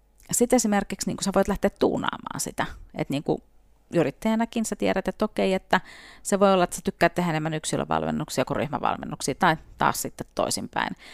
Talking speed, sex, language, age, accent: 180 wpm, female, Finnish, 40-59, native